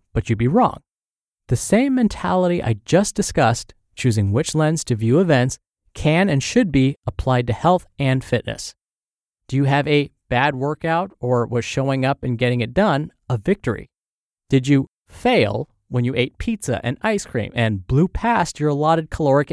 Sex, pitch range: male, 120-165 Hz